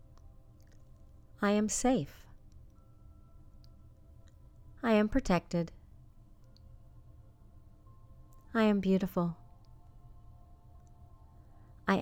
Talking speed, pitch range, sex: 50 wpm, 100-160 Hz, female